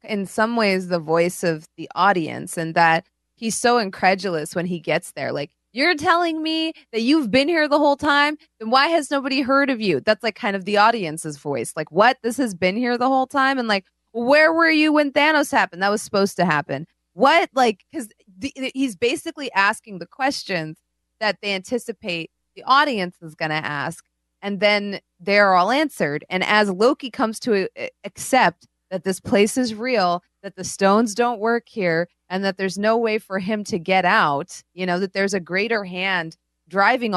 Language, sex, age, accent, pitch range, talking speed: English, female, 20-39, American, 180-240 Hz, 195 wpm